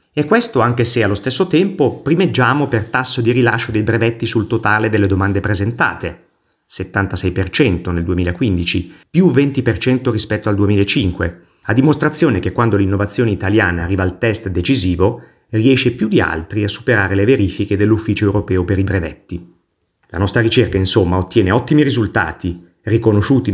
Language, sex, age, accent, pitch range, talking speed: Italian, male, 30-49, native, 100-125 Hz, 150 wpm